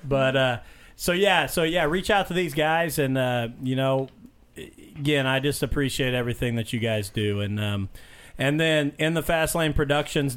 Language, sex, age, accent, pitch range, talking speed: English, male, 40-59, American, 125-145 Hz, 180 wpm